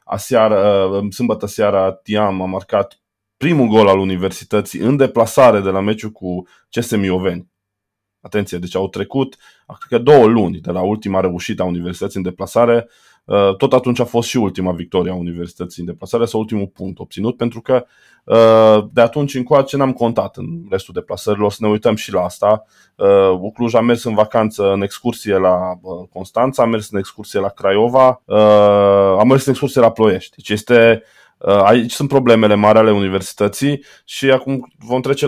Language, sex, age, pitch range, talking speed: Romanian, male, 20-39, 95-120 Hz, 170 wpm